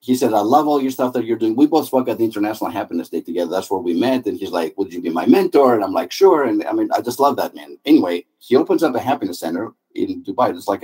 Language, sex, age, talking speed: English, male, 50-69, 300 wpm